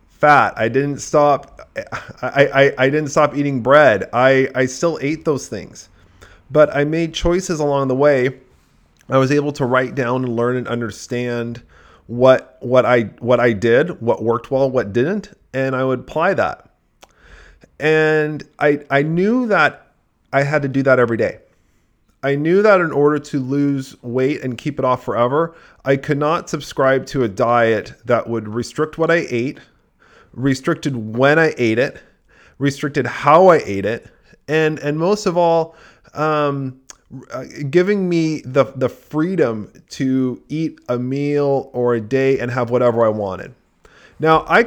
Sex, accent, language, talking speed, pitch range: male, American, English, 165 wpm, 125-160 Hz